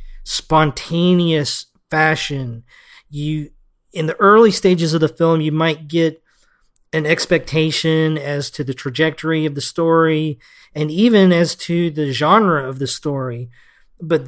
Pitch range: 140-170 Hz